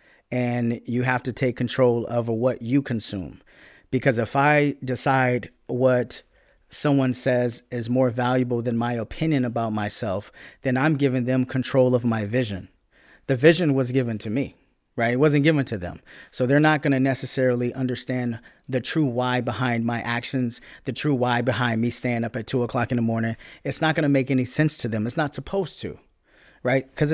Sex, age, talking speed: male, 40-59, 190 wpm